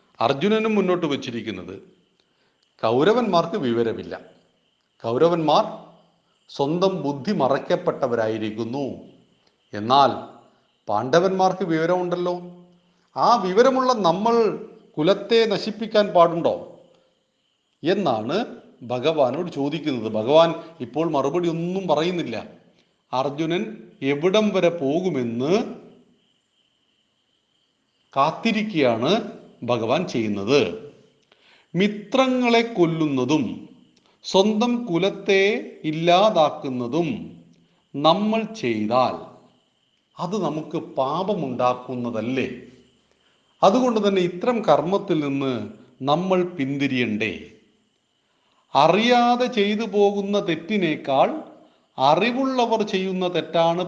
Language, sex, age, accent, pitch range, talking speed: Malayalam, male, 40-59, native, 140-205 Hz, 60 wpm